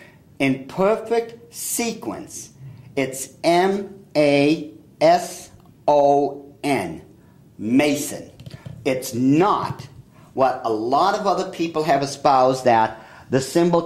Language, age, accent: English, 50-69, American